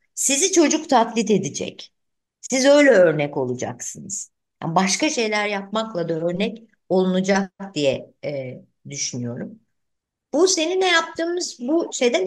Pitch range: 170-235 Hz